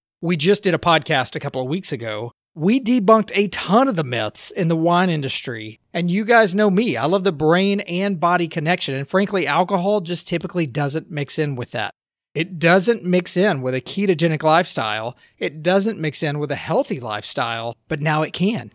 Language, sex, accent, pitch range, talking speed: English, male, American, 140-180 Hz, 200 wpm